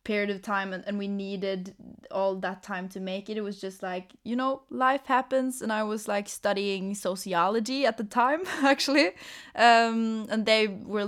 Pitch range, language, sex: 195-230 Hz, Danish, female